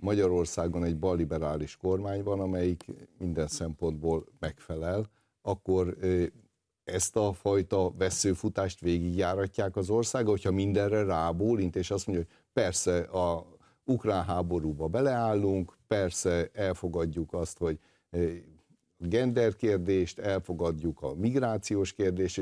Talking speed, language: 100 wpm, Hungarian